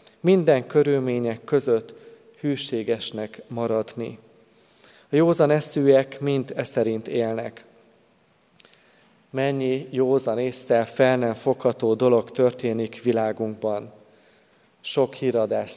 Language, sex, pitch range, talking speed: Hungarian, male, 115-140 Hz, 85 wpm